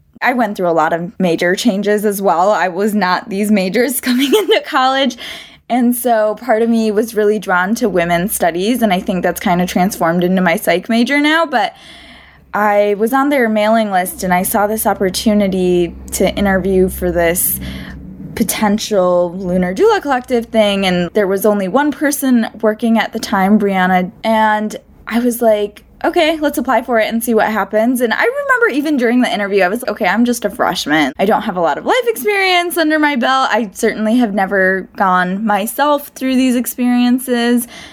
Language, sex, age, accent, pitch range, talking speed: English, female, 20-39, American, 195-255 Hz, 190 wpm